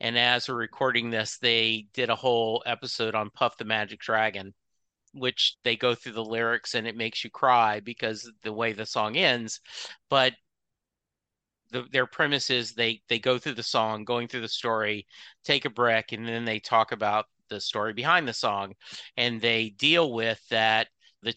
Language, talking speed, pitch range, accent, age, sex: English, 185 wpm, 115-145 Hz, American, 50-69, male